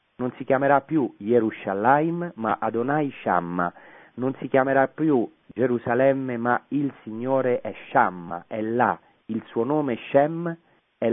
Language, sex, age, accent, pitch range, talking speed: Italian, male, 40-59, native, 90-120 Hz, 135 wpm